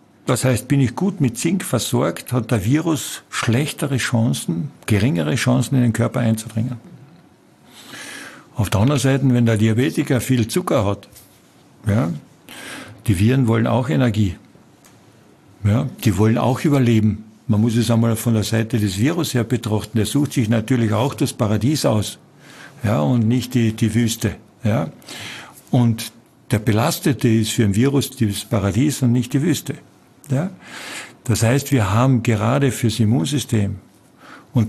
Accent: German